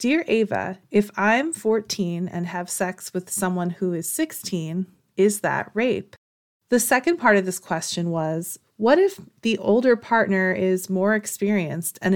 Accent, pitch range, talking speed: American, 175-220 Hz, 160 wpm